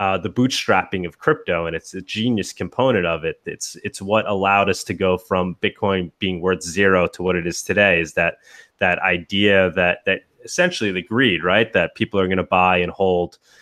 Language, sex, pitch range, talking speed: English, male, 90-110 Hz, 205 wpm